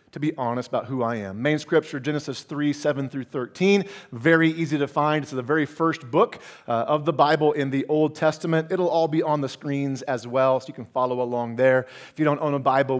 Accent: American